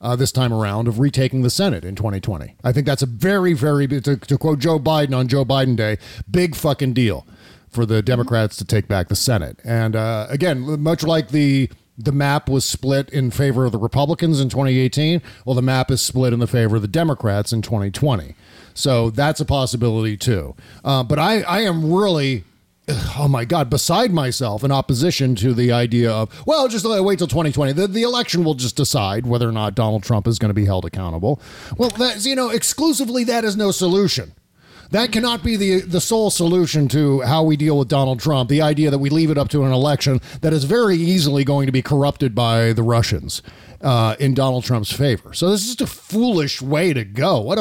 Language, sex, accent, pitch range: English, male, American, 115-160 Hz